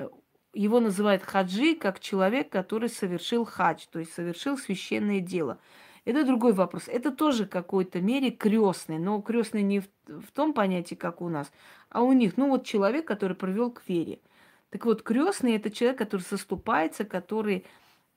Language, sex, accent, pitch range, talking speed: Russian, female, native, 180-220 Hz, 160 wpm